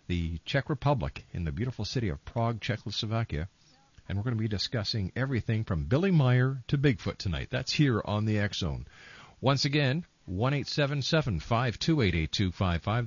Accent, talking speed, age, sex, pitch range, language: American, 140 wpm, 50-69, male, 95-140 Hz, English